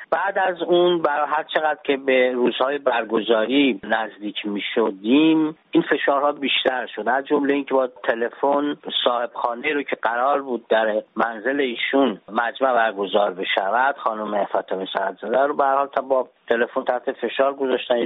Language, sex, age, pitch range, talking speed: Persian, male, 50-69, 115-145 Hz, 150 wpm